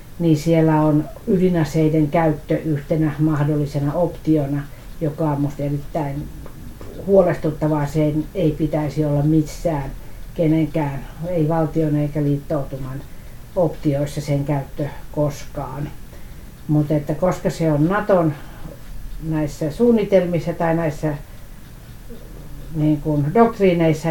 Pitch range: 145-165 Hz